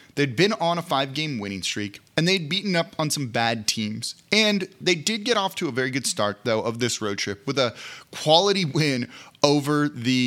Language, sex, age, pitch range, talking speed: English, male, 30-49, 115-150 Hz, 210 wpm